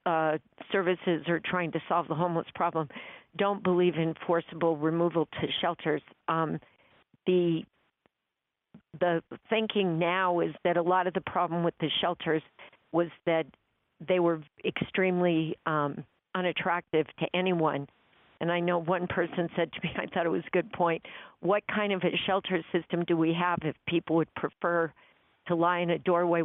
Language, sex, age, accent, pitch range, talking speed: English, female, 50-69, American, 165-180 Hz, 165 wpm